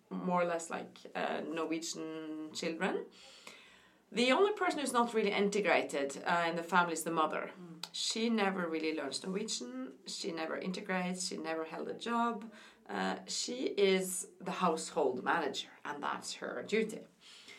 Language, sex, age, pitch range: English, female, 30-49, 175-220 Hz